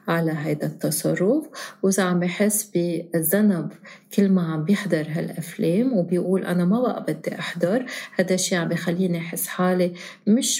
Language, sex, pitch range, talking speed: Arabic, female, 165-195 Hz, 140 wpm